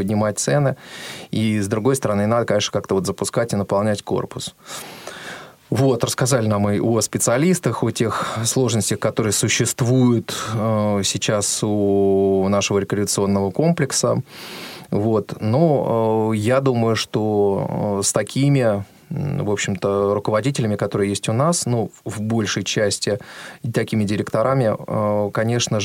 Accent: native